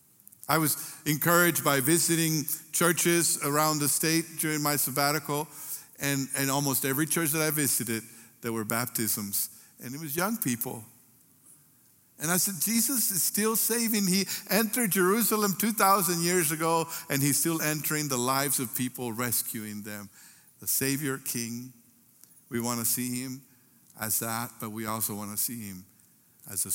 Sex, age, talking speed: male, 60-79, 155 wpm